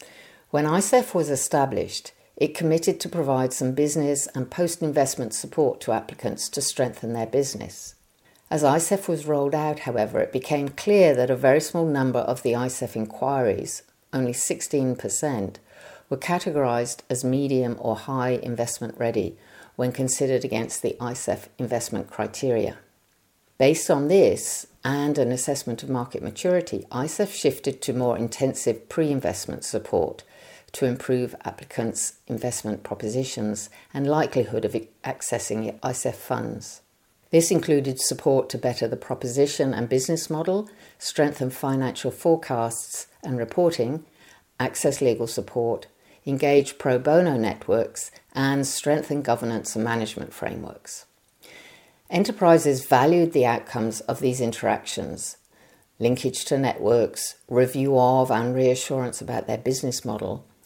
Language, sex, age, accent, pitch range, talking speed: English, female, 50-69, British, 120-150 Hz, 125 wpm